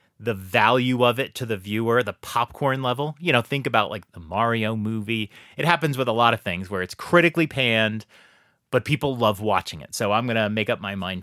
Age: 30-49